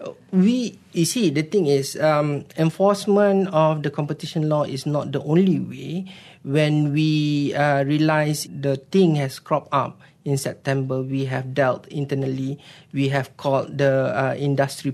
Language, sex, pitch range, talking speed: English, male, 135-155 Hz, 150 wpm